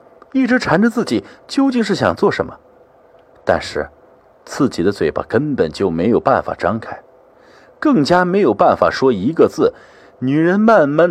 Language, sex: Chinese, male